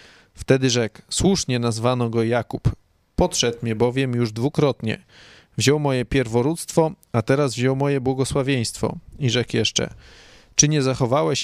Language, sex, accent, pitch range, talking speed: Polish, male, native, 120-150 Hz, 130 wpm